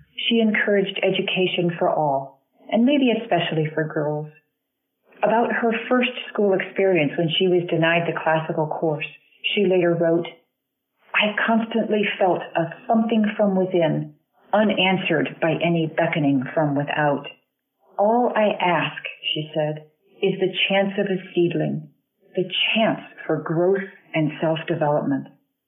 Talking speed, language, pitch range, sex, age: 130 wpm, English, 160-205 Hz, female, 40-59